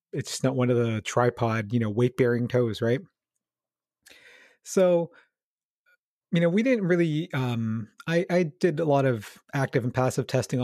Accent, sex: American, male